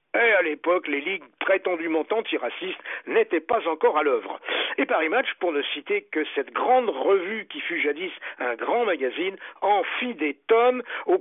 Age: 60-79